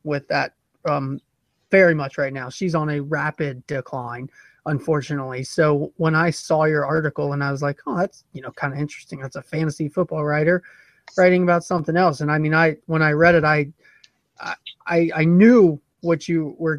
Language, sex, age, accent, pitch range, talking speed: English, male, 30-49, American, 150-175 Hz, 195 wpm